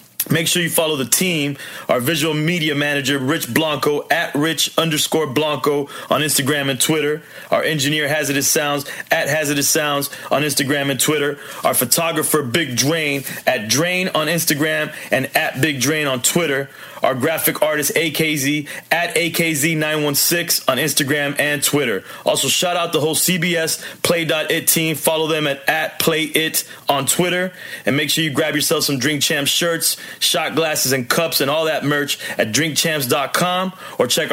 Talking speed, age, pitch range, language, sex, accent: 160 wpm, 30-49, 140-165 Hz, English, male, American